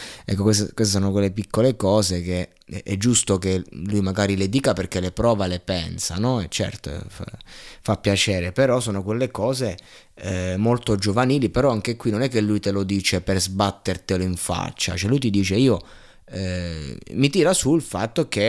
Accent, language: native, Italian